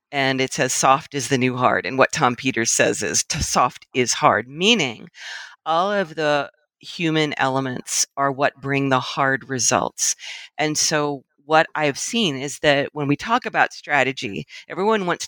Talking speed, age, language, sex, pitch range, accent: 170 wpm, 40-59, English, female, 140-165 Hz, American